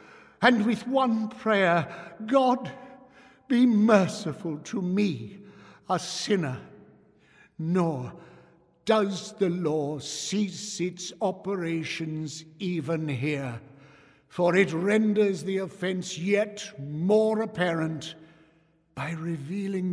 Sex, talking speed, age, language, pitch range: male, 90 wpm, 60-79, English, 155-215 Hz